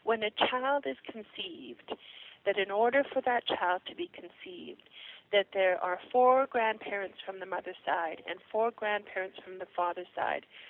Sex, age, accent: female, 40-59, American